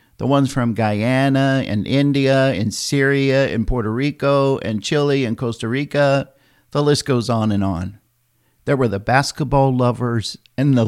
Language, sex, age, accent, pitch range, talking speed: English, male, 50-69, American, 110-140 Hz, 160 wpm